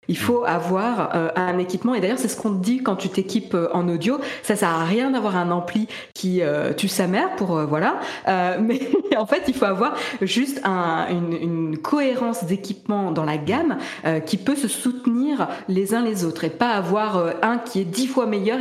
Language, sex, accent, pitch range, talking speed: French, female, French, 175-235 Hz, 225 wpm